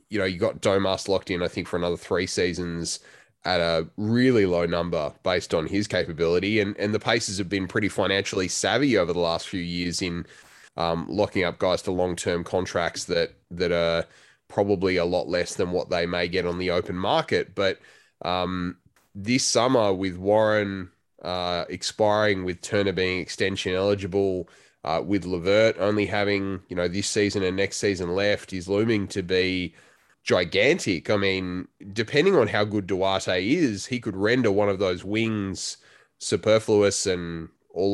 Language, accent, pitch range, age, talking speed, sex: English, Australian, 90-100 Hz, 20-39, 170 wpm, male